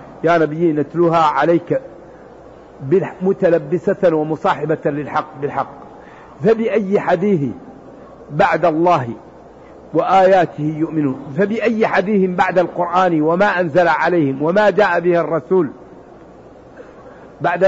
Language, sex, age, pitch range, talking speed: Arabic, male, 50-69, 160-185 Hz, 90 wpm